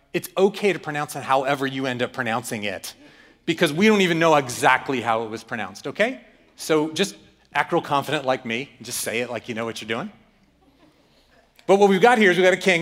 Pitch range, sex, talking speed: 115-165 Hz, male, 225 wpm